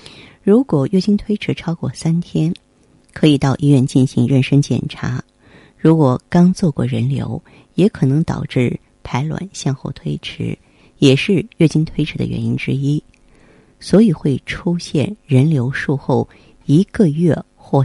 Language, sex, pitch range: Chinese, female, 130-165 Hz